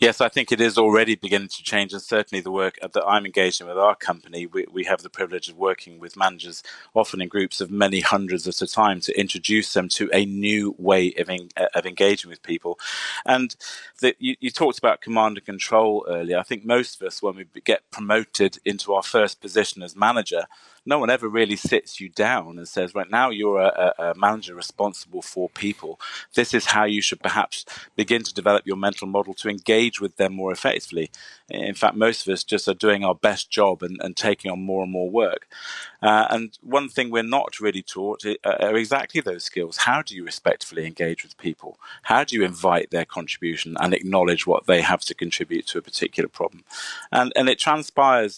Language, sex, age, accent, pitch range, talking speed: English, male, 30-49, British, 95-115 Hz, 210 wpm